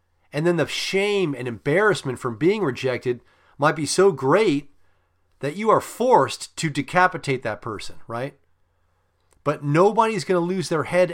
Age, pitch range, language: 40-59, 115-175 Hz, English